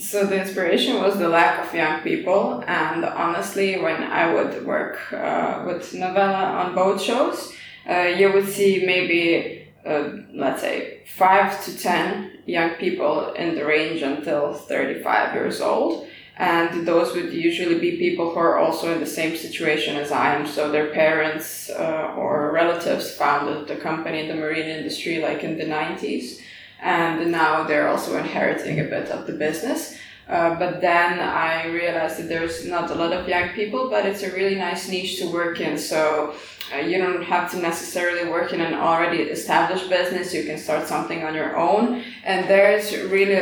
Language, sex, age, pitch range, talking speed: English, female, 20-39, 160-185 Hz, 180 wpm